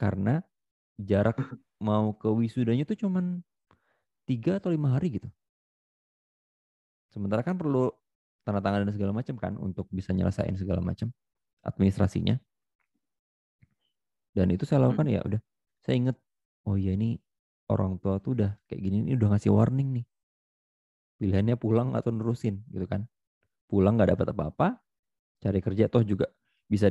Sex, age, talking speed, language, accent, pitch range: male, 30-49, 145 wpm, Indonesian, native, 95-115 Hz